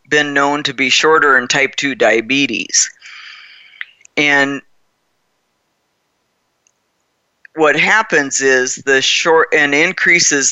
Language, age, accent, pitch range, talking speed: English, 50-69, American, 125-150 Hz, 95 wpm